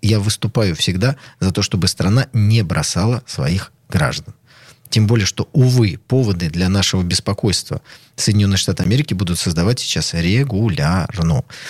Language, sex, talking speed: Russian, male, 135 wpm